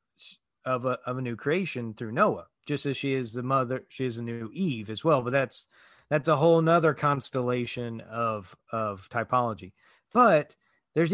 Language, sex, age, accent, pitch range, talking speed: English, male, 40-59, American, 125-170 Hz, 180 wpm